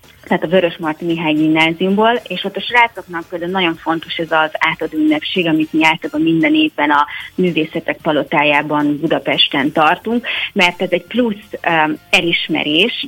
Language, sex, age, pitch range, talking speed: Hungarian, female, 30-49, 160-195 Hz, 140 wpm